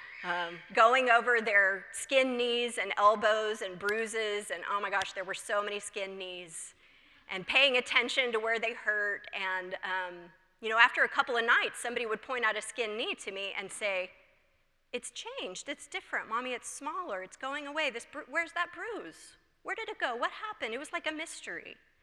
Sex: female